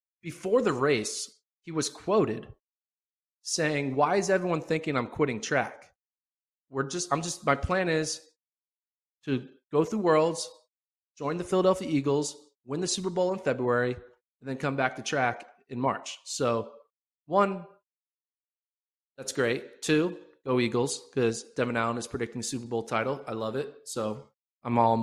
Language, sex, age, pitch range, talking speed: English, male, 20-39, 115-150 Hz, 160 wpm